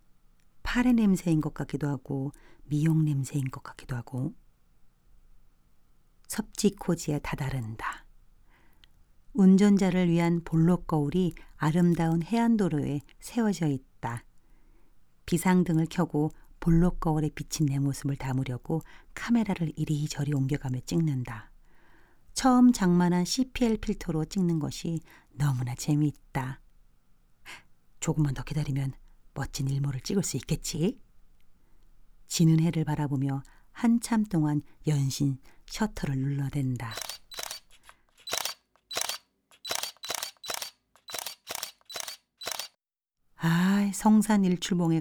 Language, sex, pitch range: Korean, female, 130-175 Hz